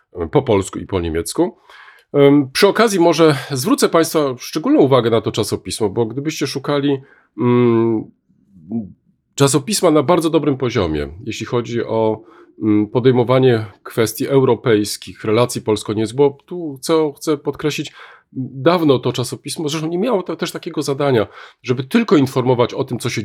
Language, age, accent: Polish, 40-59, native